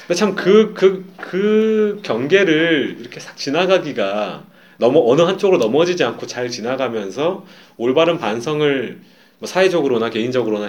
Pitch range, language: 130-190 Hz, English